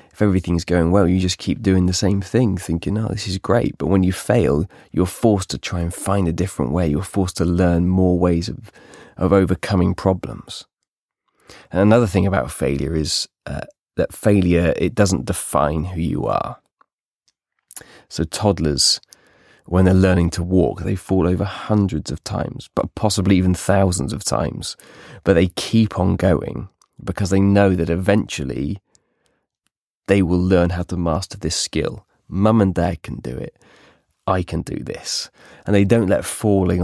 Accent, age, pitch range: British, 20-39, 85-100 Hz